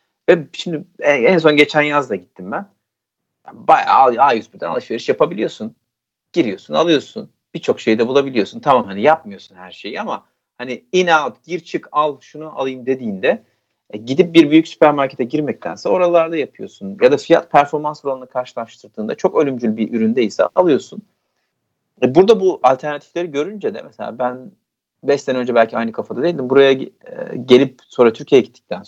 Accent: native